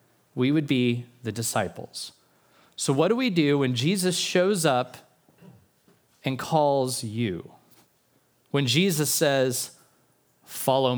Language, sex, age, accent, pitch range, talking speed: English, male, 30-49, American, 120-170 Hz, 115 wpm